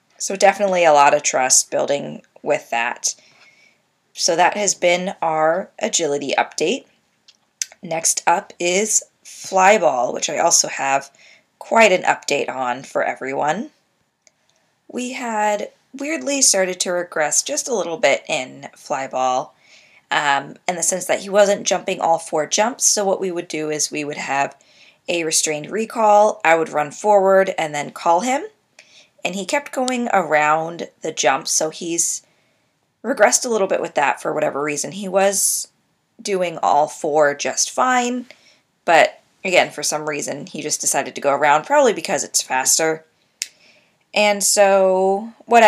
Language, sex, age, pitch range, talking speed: English, female, 20-39, 150-205 Hz, 150 wpm